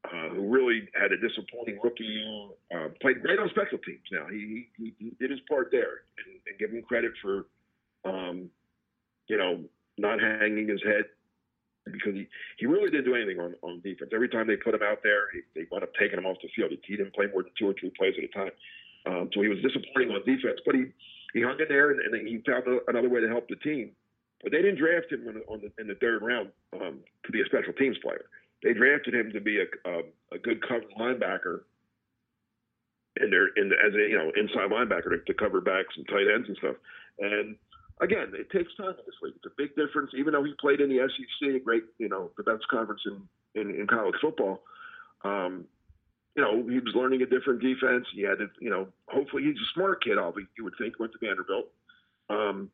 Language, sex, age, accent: English, male, 50-69, American